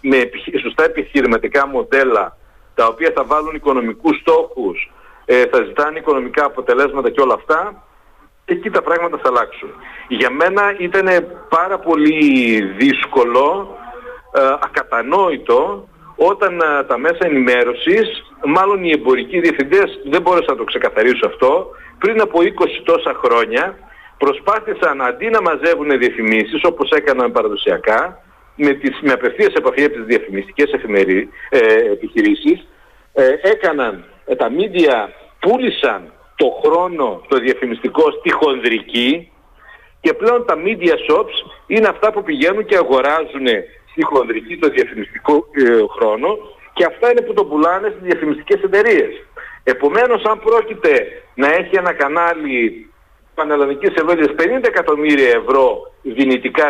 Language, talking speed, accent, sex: Greek, 125 wpm, native, male